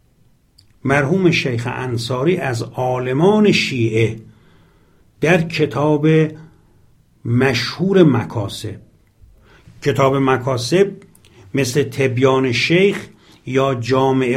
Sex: male